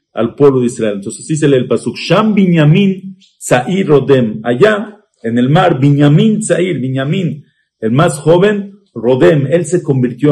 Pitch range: 130-175 Hz